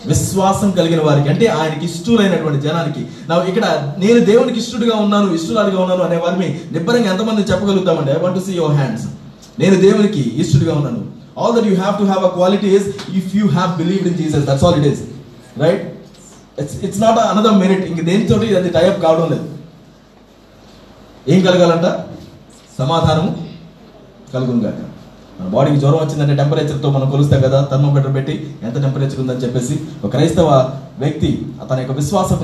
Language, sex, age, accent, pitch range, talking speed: Telugu, male, 20-39, native, 150-195 Hz, 125 wpm